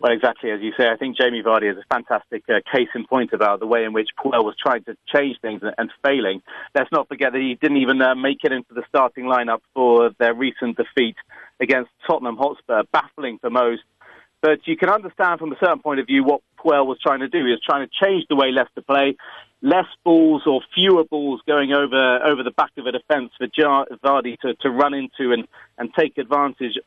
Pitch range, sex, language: 125-155 Hz, male, English